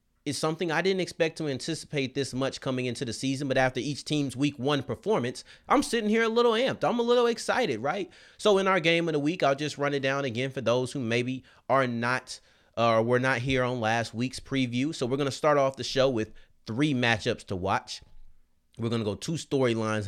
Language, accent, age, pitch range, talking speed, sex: English, American, 30-49, 115-145 Hz, 235 wpm, male